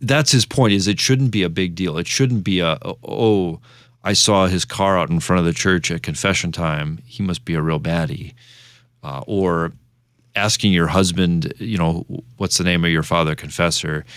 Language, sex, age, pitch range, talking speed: English, male, 30-49, 85-120 Hz, 205 wpm